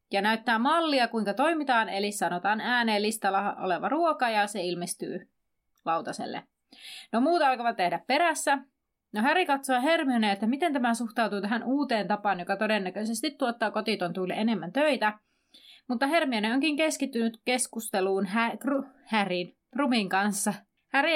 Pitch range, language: 205-260 Hz, Finnish